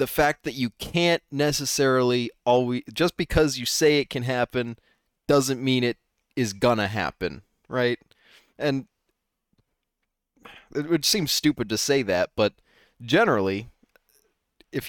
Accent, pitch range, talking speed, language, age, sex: American, 95-130 Hz, 135 wpm, English, 20-39, male